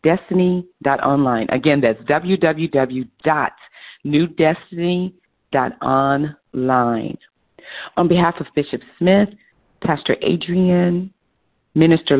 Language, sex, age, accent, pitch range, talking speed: English, female, 40-59, American, 140-180 Hz, 60 wpm